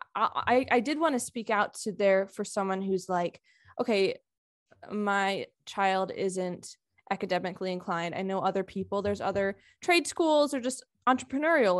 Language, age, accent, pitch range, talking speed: English, 20-39, American, 185-225 Hz, 155 wpm